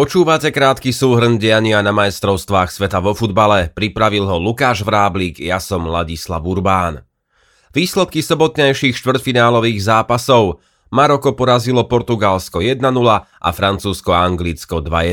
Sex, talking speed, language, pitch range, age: male, 105 wpm, Slovak, 100-125 Hz, 30-49